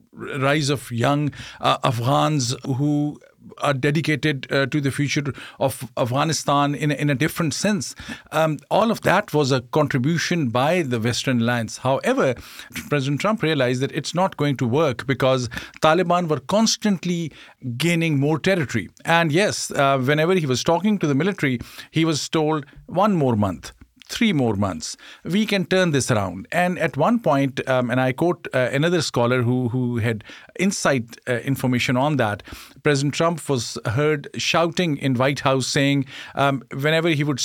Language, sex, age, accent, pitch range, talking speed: English, male, 50-69, Indian, 130-170 Hz, 165 wpm